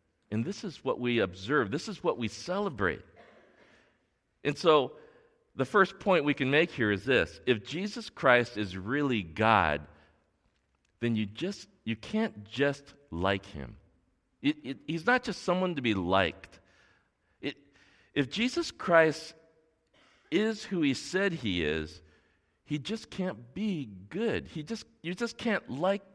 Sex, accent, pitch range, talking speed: male, American, 95-160 Hz, 150 wpm